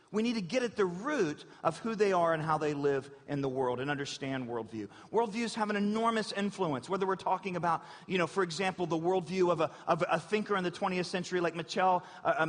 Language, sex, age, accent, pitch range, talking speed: English, male, 40-59, American, 155-190 Hz, 225 wpm